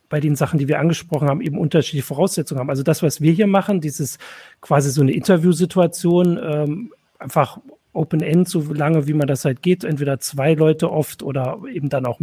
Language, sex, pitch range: German, male, 145-165 Hz